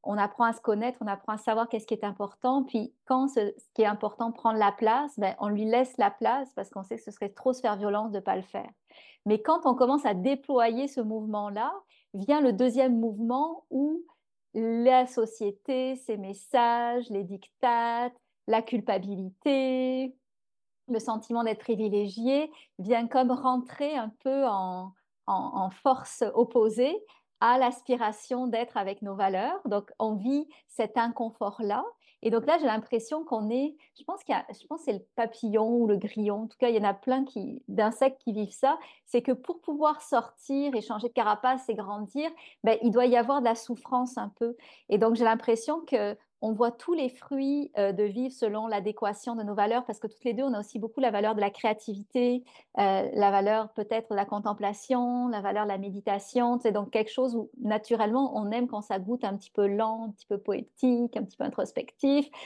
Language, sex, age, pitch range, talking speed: French, female, 40-59, 210-255 Hz, 205 wpm